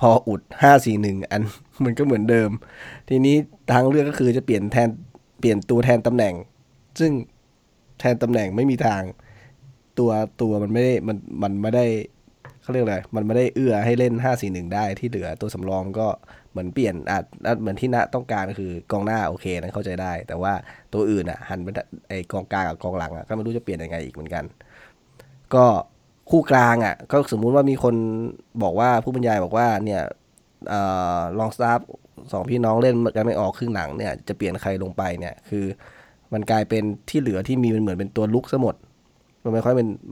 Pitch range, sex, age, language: 100-125 Hz, male, 20-39, Thai